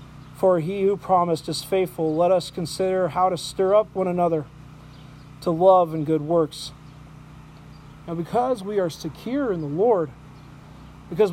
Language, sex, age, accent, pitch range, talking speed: English, male, 40-59, American, 145-195 Hz, 155 wpm